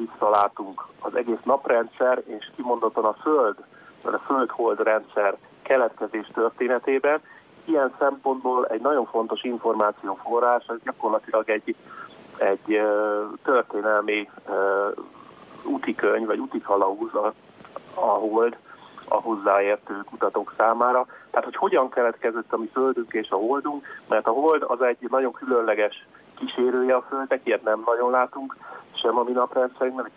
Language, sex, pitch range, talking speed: Hungarian, male, 110-130 Hz, 125 wpm